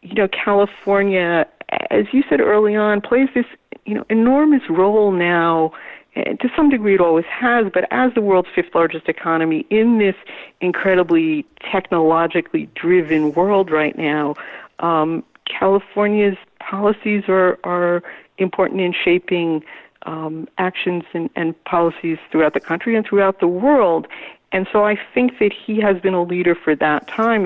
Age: 50-69